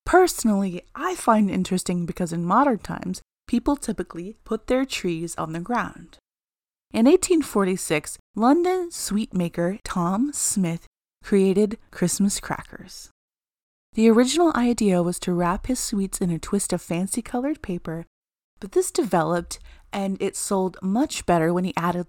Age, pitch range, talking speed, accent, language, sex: 30-49, 175-220 Hz, 145 wpm, American, English, female